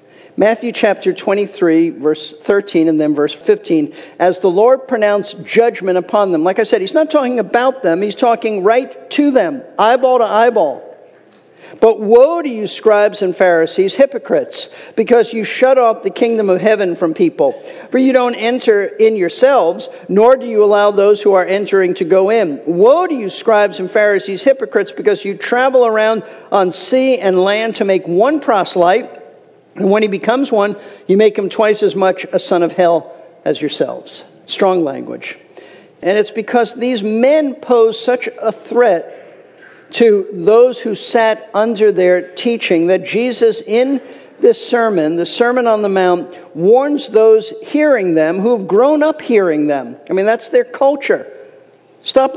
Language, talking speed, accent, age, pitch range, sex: English, 170 wpm, American, 50-69, 195-270 Hz, male